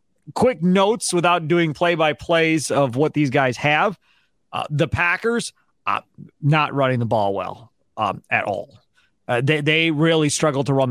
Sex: male